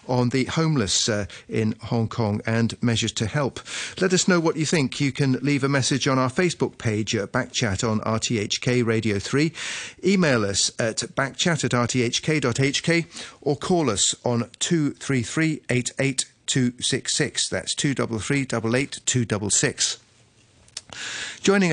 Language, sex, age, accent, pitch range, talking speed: English, male, 40-59, British, 115-140 Hz, 145 wpm